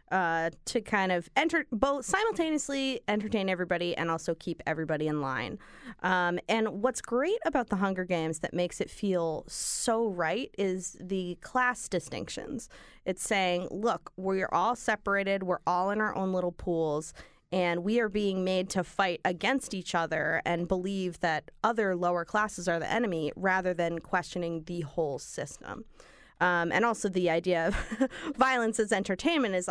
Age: 20-39